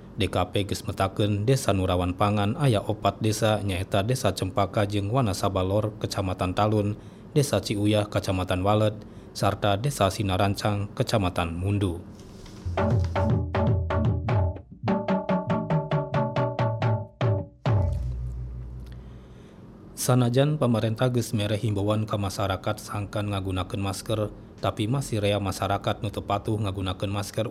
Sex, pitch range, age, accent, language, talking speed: male, 95-110 Hz, 20-39, native, Indonesian, 90 wpm